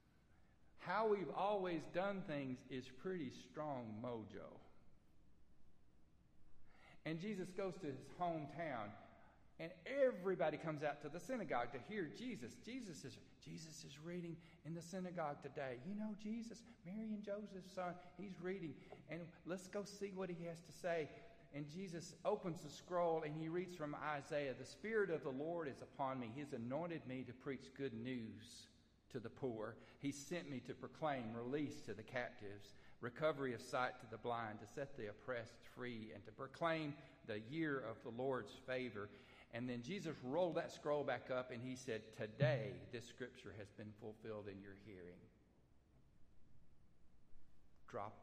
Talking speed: 160 wpm